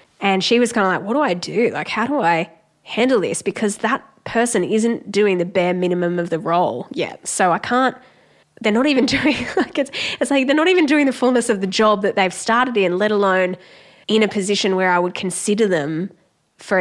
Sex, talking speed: female, 225 wpm